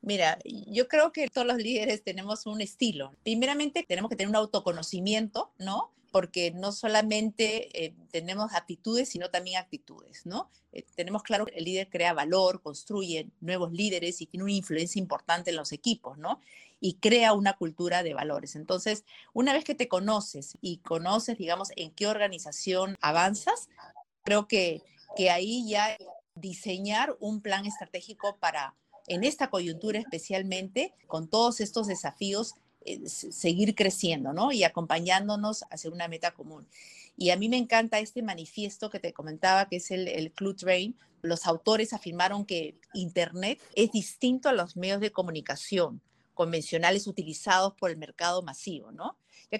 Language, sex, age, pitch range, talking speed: Spanish, female, 40-59, 175-220 Hz, 155 wpm